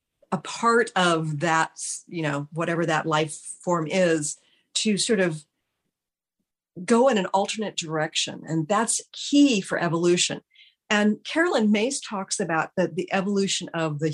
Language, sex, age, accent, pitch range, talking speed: English, female, 50-69, American, 165-210 Hz, 145 wpm